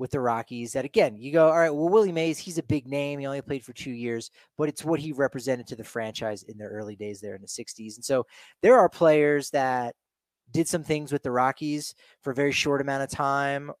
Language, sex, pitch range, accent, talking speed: English, male, 135-190 Hz, American, 250 wpm